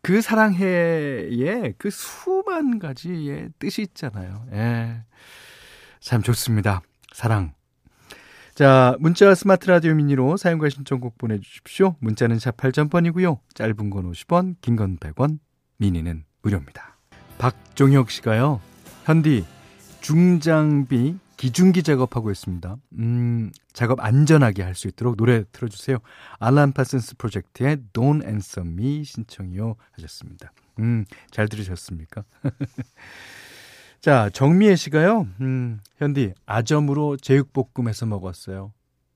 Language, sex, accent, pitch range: Korean, male, native, 110-150 Hz